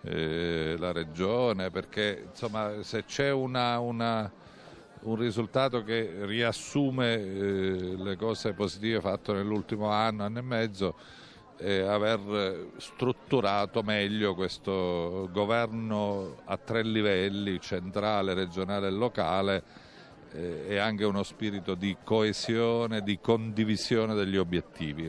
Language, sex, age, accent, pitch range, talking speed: Italian, male, 50-69, native, 90-110 Hz, 115 wpm